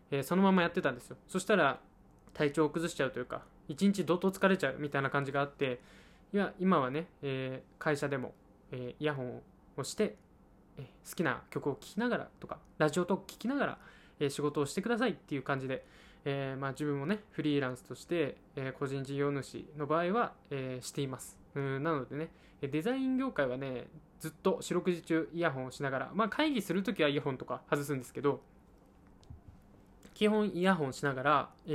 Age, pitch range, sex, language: 20-39, 135-170 Hz, male, Japanese